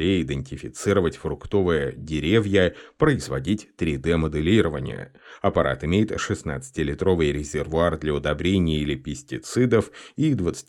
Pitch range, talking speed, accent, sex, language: 75-95 Hz, 80 wpm, native, male, Russian